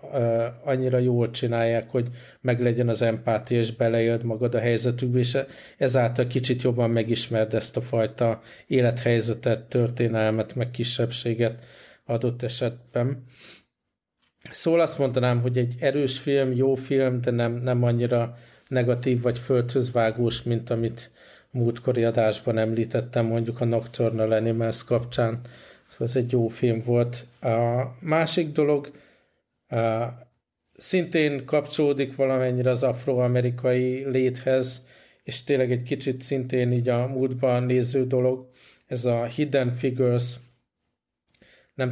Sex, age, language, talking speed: male, 50-69, Hungarian, 120 wpm